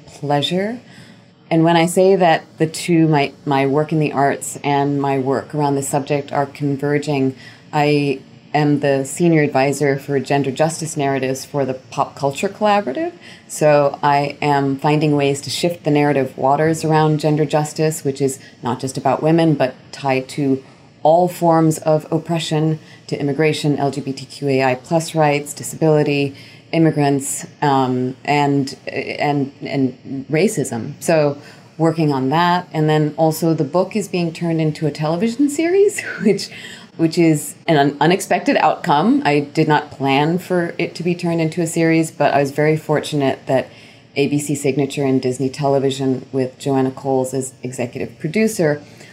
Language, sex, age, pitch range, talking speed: English, female, 30-49, 135-160 Hz, 155 wpm